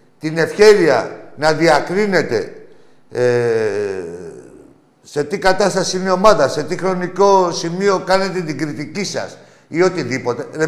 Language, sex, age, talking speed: Greek, male, 60-79, 125 wpm